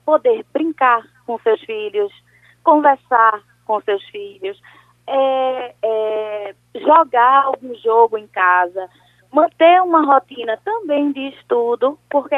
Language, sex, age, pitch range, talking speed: Portuguese, female, 20-39, 215-295 Hz, 100 wpm